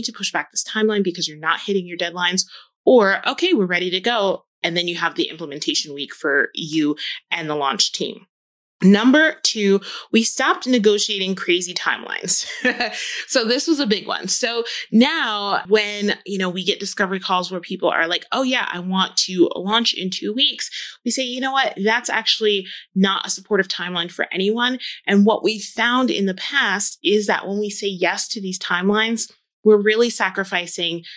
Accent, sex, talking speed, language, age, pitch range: American, female, 185 wpm, English, 20-39, 175-220 Hz